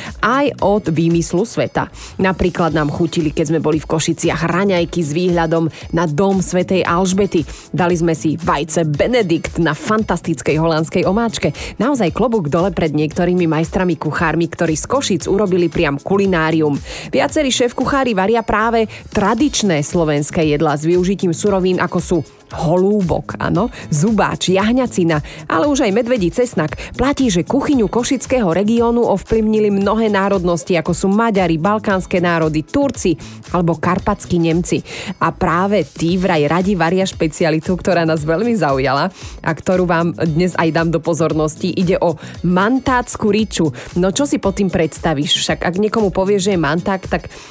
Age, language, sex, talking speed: 30-49, Slovak, female, 145 wpm